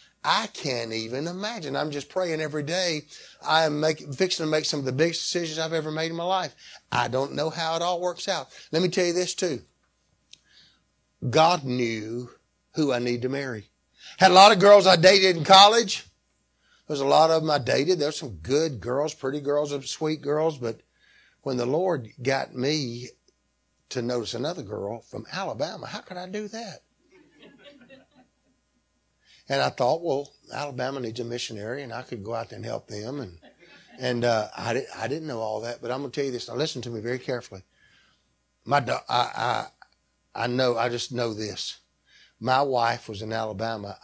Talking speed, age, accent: 195 wpm, 50-69, American